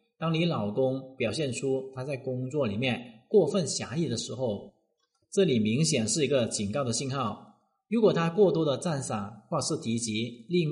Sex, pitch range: male, 110-165 Hz